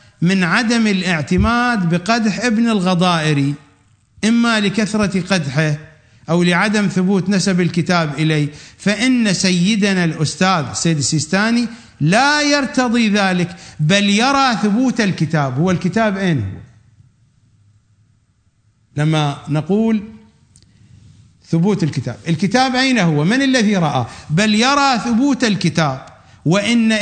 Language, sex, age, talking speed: English, male, 50-69, 100 wpm